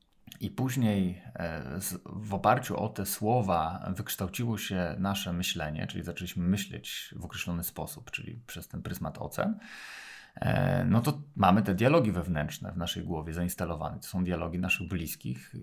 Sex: male